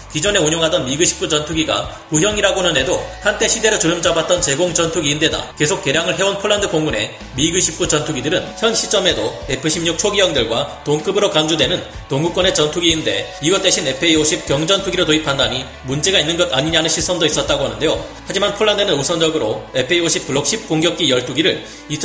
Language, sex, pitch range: Korean, male, 150-185 Hz